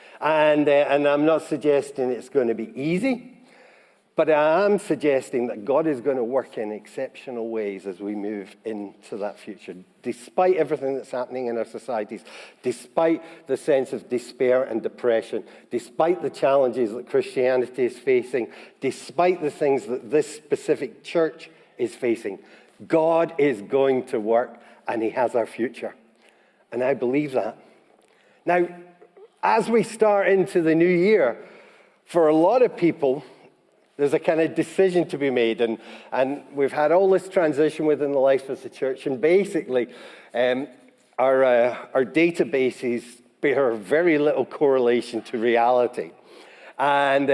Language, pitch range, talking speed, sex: English, 125-180 Hz, 155 wpm, male